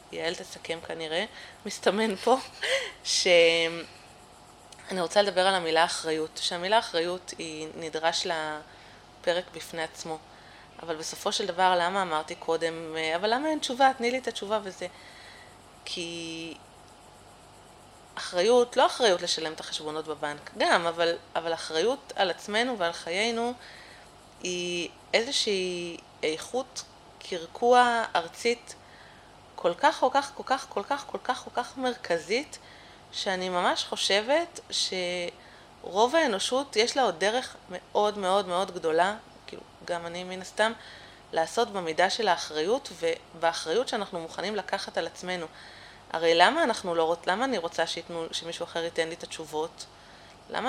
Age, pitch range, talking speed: 20-39, 165-230 Hz, 130 wpm